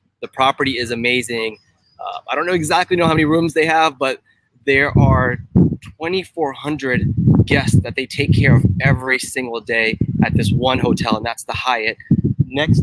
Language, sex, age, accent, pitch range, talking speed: English, male, 20-39, American, 130-185 Hz, 170 wpm